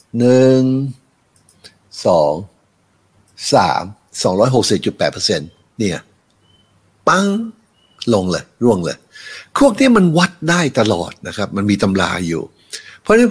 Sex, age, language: male, 60-79, Thai